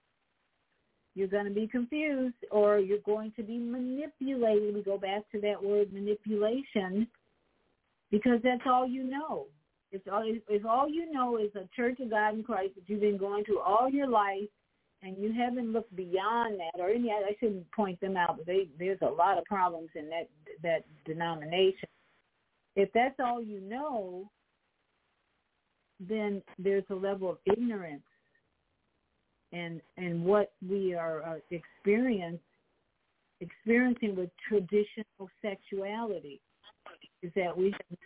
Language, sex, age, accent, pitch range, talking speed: English, female, 50-69, American, 185-225 Hz, 145 wpm